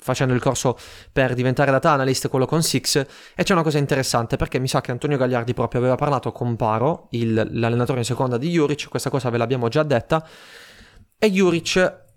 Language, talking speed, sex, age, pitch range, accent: Italian, 195 wpm, male, 20-39, 120-145 Hz, native